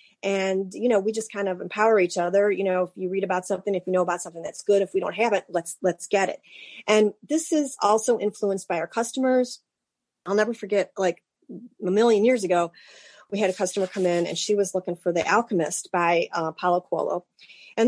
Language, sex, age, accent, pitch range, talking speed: English, female, 30-49, American, 185-225 Hz, 225 wpm